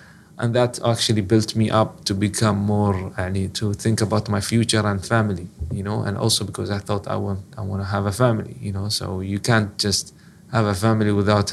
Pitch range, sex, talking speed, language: 100-120 Hz, male, 225 wpm, English